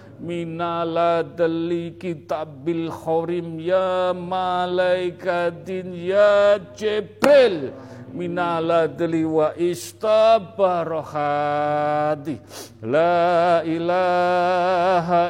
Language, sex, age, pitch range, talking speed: Indonesian, male, 50-69, 160-215 Hz, 65 wpm